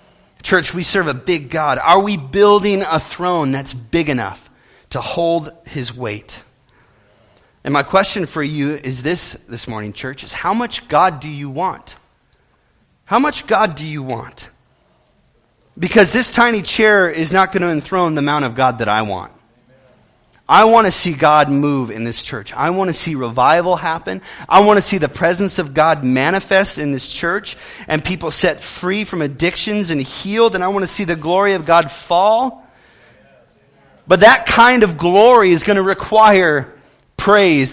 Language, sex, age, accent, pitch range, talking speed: English, male, 30-49, American, 135-195 Hz, 180 wpm